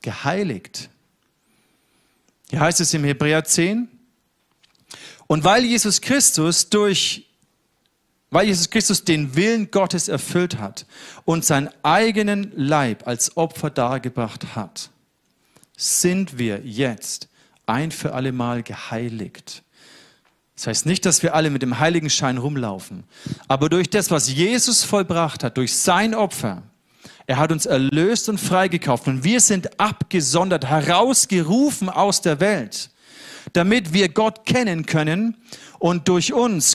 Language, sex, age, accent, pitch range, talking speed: German, male, 40-59, German, 145-195 Hz, 125 wpm